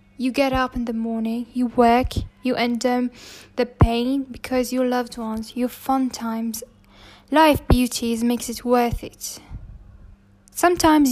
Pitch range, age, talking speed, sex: 235-280 Hz, 10-29, 145 wpm, female